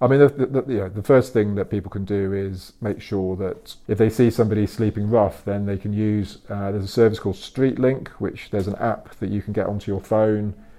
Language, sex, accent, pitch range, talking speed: English, male, British, 100-110 Hz, 230 wpm